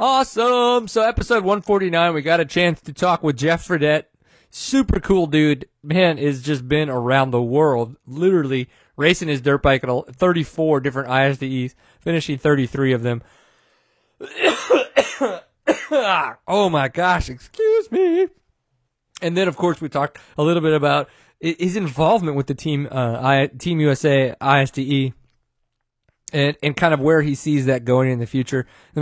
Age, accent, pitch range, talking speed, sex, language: 30-49, American, 130-165 Hz, 155 wpm, male, English